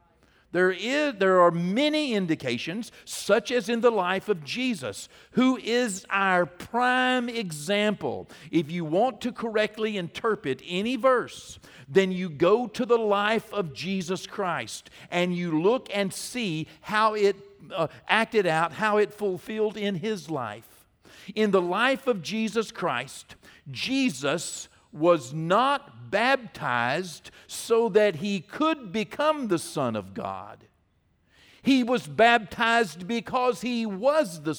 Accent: American